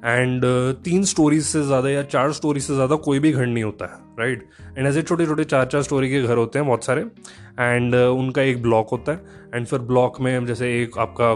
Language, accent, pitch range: Hindi, native, 115-155 Hz